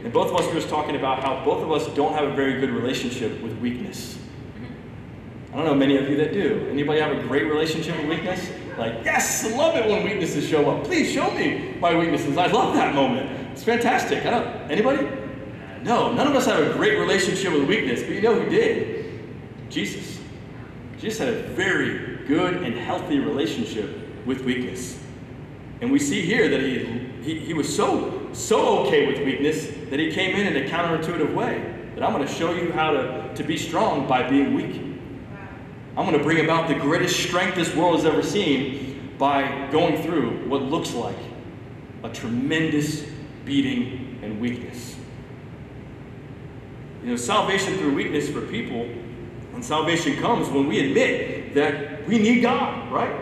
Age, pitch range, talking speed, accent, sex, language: 30-49, 130-170 Hz, 185 wpm, American, male, English